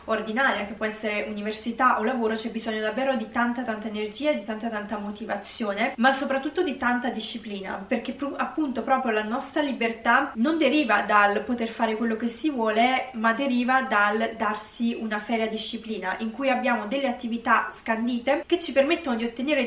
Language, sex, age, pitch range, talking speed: Italian, female, 20-39, 215-260 Hz, 175 wpm